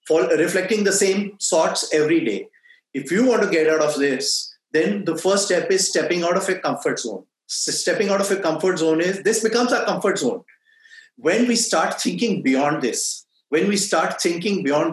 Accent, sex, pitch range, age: Indian, male, 165-220 Hz, 30-49